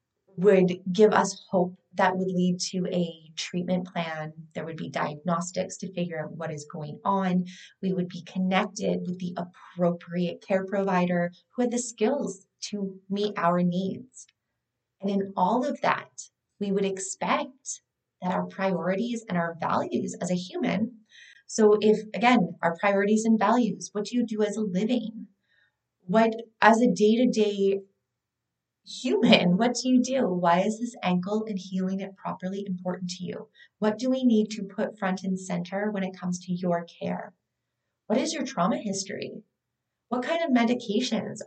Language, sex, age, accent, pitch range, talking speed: English, female, 20-39, American, 180-215 Hz, 165 wpm